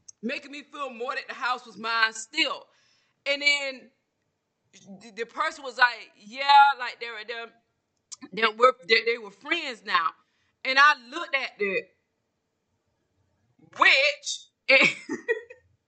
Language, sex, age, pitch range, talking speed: English, female, 20-39, 230-285 Hz, 105 wpm